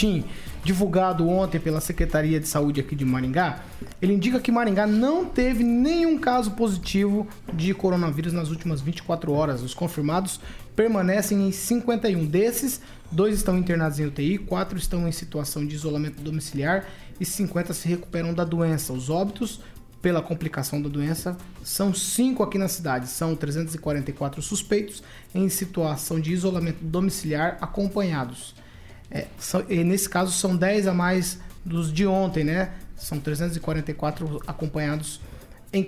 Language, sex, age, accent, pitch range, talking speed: Portuguese, male, 20-39, Brazilian, 155-195 Hz, 140 wpm